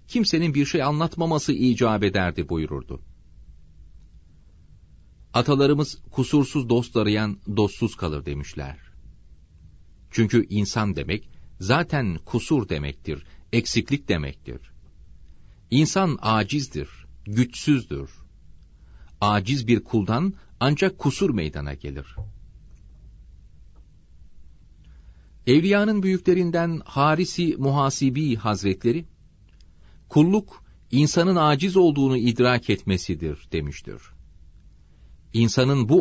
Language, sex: Turkish, male